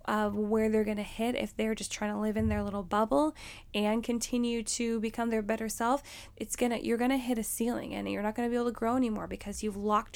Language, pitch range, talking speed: English, 210-245 Hz, 250 wpm